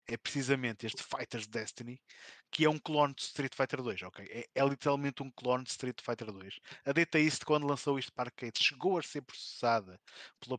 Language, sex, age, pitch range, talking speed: Portuguese, male, 20-39, 110-140 Hz, 200 wpm